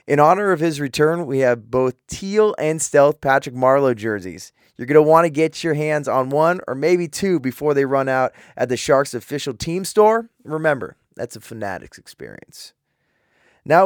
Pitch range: 125-160 Hz